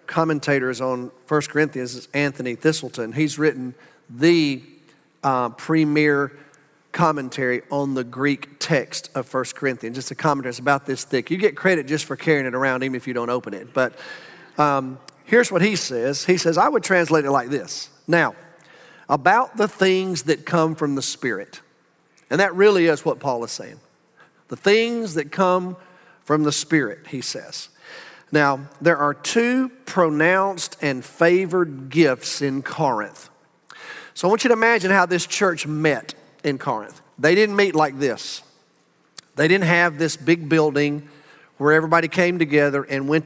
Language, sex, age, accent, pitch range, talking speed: English, male, 40-59, American, 135-175 Hz, 165 wpm